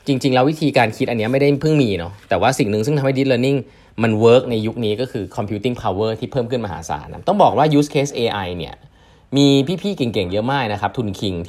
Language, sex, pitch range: Thai, male, 100-135 Hz